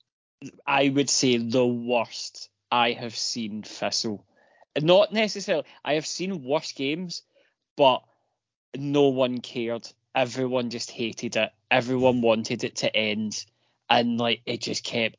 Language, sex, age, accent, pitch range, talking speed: English, male, 20-39, British, 120-145 Hz, 135 wpm